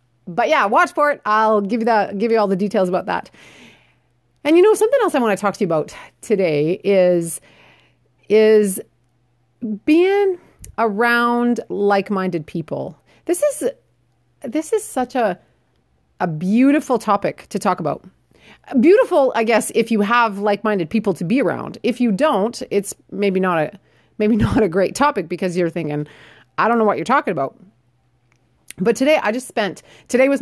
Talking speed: 170 wpm